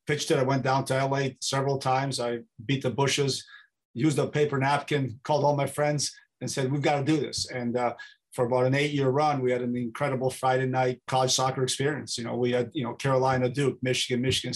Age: 40-59